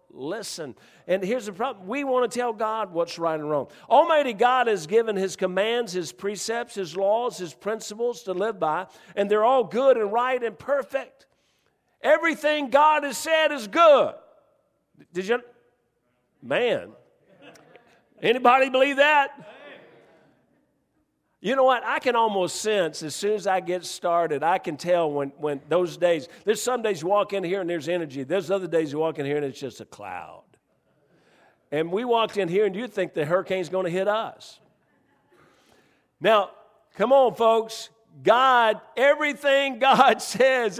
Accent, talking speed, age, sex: American, 165 wpm, 50-69, male